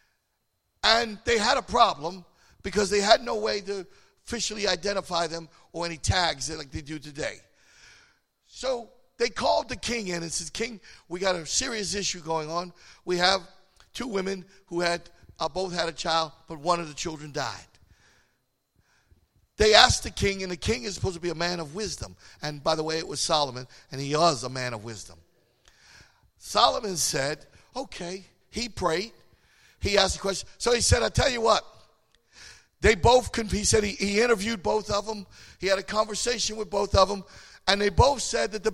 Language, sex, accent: English, male, American